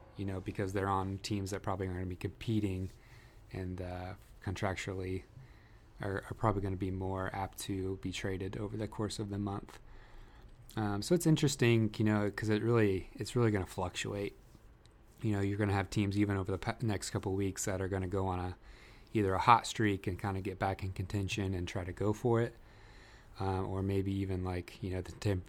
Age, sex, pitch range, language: 20-39, male, 95-105 Hz, English